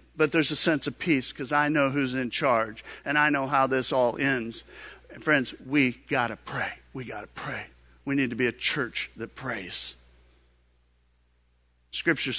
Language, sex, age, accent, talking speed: English, male, 50-69, American, 180 wpm